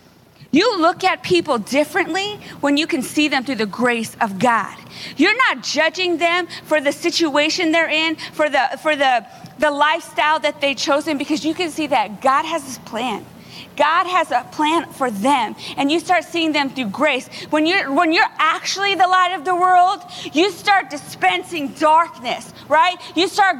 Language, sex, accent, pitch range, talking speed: English, female, American, 275-345 Hz, 185 wpm